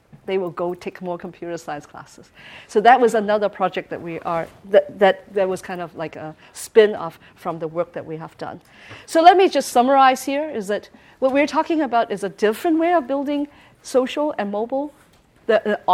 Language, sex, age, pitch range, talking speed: English, female, 50-69, 180-240 Hz, 210 wpm